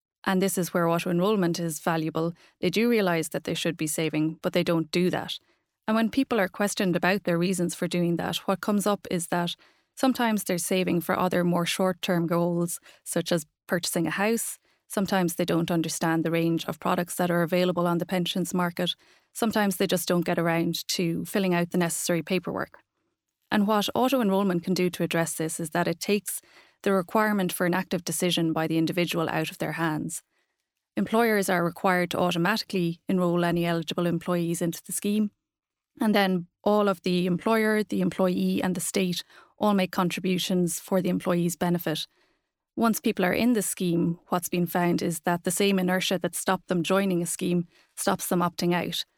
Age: 20-39